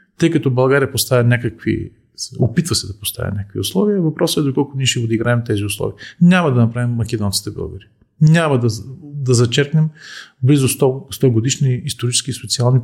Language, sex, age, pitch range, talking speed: Bulgarian, male, 40-59, 110-140 Hz, 165 wpm